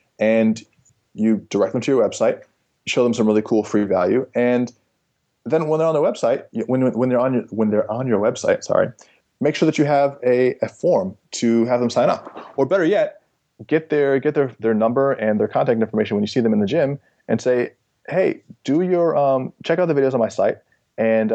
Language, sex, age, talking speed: English, male, 20-39, 220 wpm